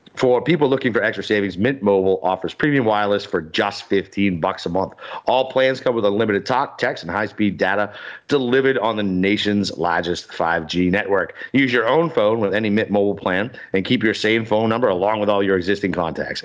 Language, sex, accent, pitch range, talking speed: English, male, American, 95-120 Hz, 200 wpm